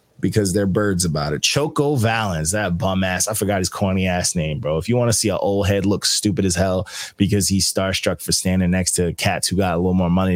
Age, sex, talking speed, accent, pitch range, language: 20-39, male, 250 wpm, American, 90-105 Hz, English